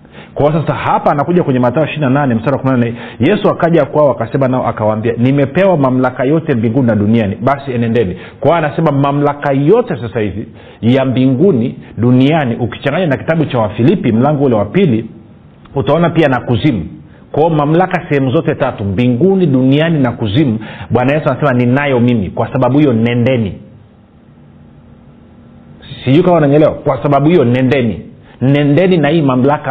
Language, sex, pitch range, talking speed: Swahili, male, 120-150 Hz, 150 wpm